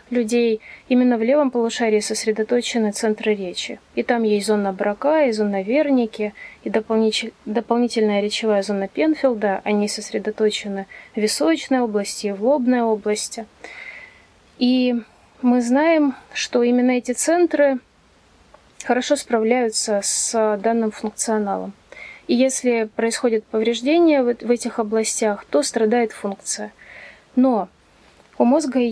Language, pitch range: Russian, 215-255 Hz